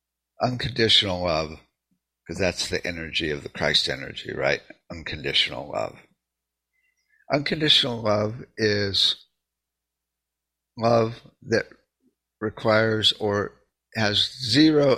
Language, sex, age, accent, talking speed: English, male, 60-79, American, 90 wpm